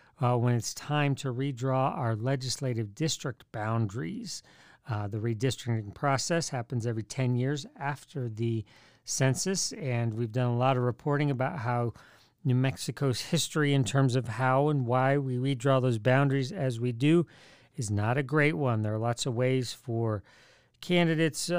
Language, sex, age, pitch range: English, male, 40-59, 120-145 Hz